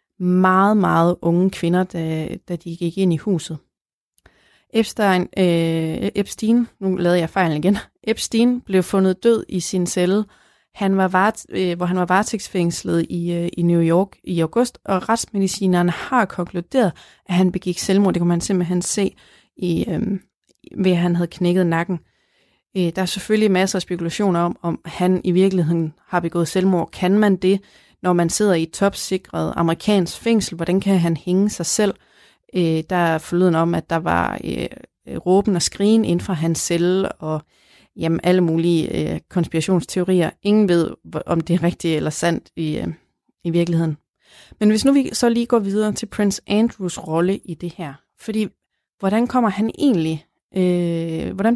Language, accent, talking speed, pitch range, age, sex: Danish, native, 175 wpm, 170-200 Hz, 30-49, female